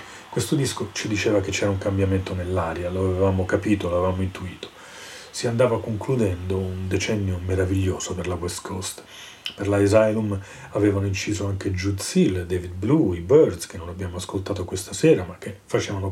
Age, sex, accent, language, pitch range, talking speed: 40-59, male, native, Italian, 90-105 Hz, 170 wpm